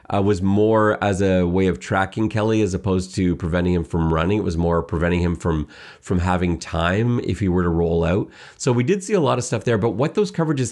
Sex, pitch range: male, 90-115 Hz